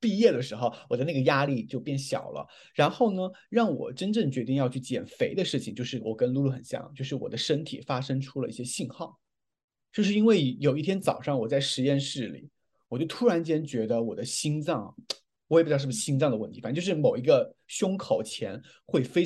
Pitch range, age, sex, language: 120-155 Hz, 20-39, male, Chinese